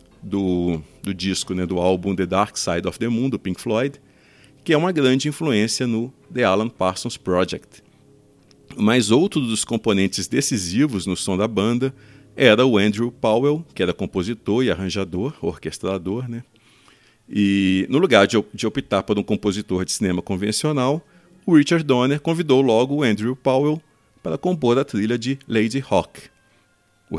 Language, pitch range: Portuguese, 95-130 Hz